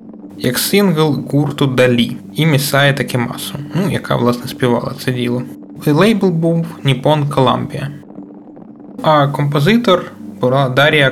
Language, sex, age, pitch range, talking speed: Ukrainian, male, 20-39, 120-155 Hz, 115 wpm